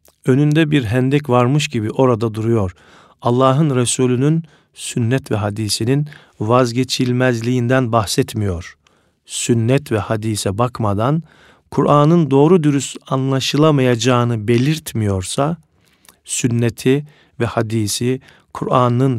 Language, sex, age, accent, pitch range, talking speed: Turkish, male, 50-69, native, 110-140 Hz, 85 wpm